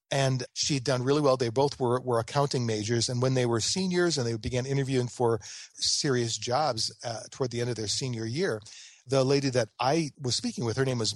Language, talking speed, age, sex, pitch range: English, 220 wpm, 40-59, male, 115-145 Hz